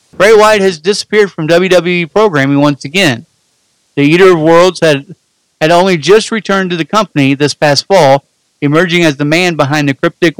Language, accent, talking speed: English, American, 180 wpm